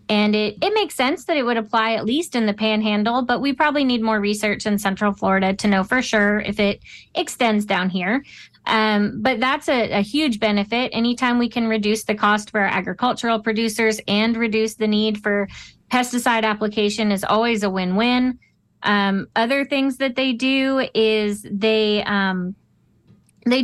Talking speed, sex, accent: 180 wpm, female, American